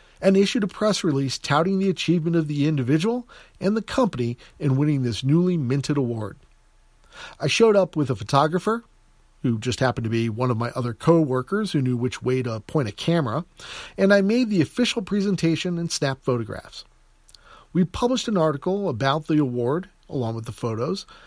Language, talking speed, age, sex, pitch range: English, 180 wpm, 40-59, male, 130-185 Hz